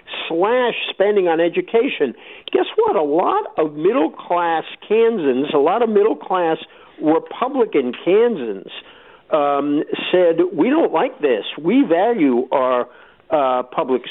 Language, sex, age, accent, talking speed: English, male, 50-69, American, 120 wpm